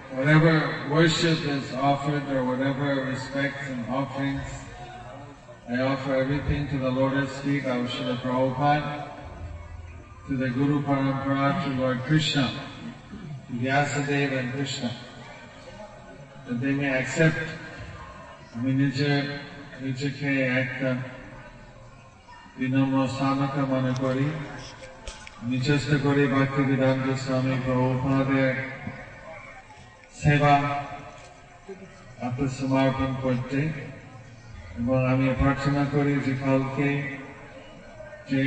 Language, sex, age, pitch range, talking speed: English, male, 40-59, 130-140 Hz, 85 wpm